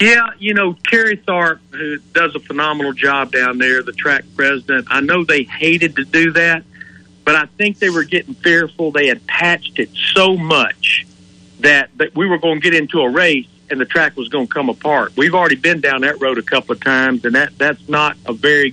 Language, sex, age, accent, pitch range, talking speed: English, male, 50-69, American, 140-185 Hz, 220 wpm